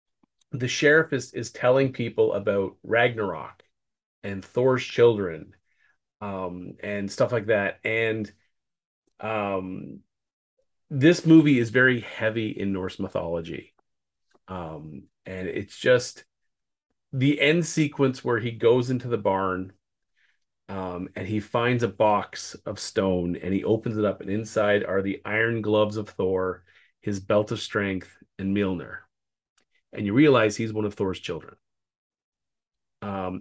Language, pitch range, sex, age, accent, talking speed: English, 95-125 Hz, male, 30-49, American, 135 wpm